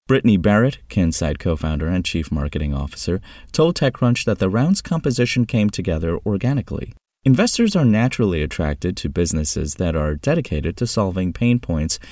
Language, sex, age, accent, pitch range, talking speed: English, male, 30-49, American, 75-110 Hz, 150 wpm